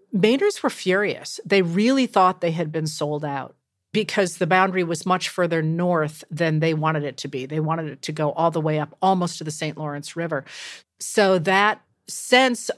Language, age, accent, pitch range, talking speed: English, 40-59, American, 160-190 Hz, 195 wpm